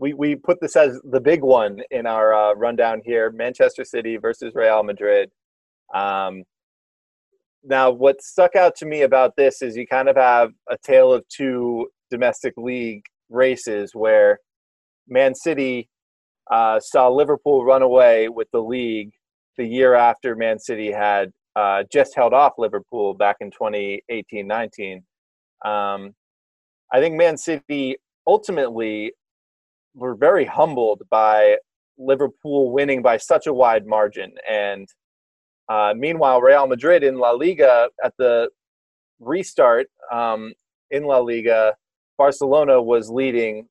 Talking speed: 135 wpm